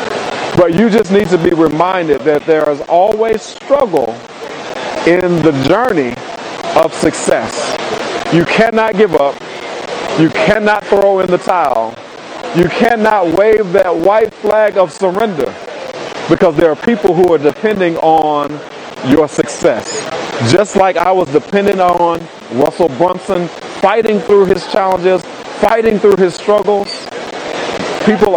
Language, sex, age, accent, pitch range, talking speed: English, male, 40-59, American, 165-210 Hz, 130 wpm